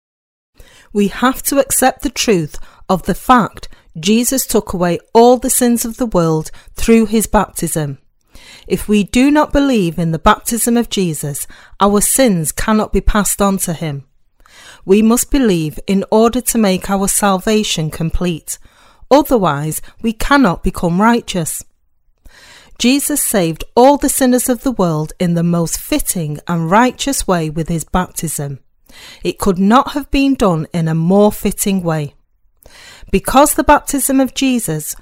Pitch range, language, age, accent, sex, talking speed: 165-245 Hz, English, 40-59, British, female, 150 wpm